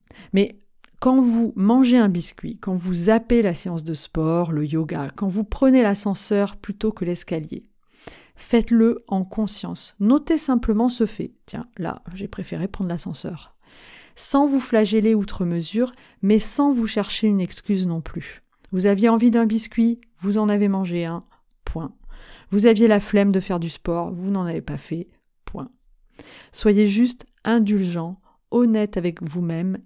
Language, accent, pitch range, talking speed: French, French, 185-230 Hz, 160 wpm